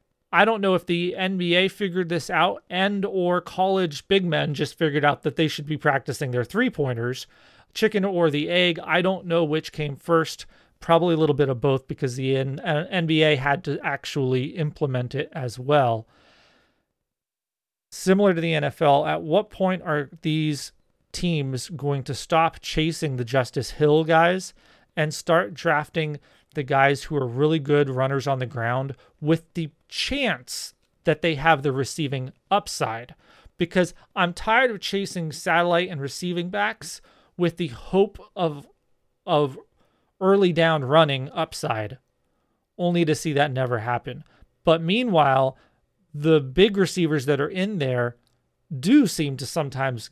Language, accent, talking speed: English, American, 155 wpm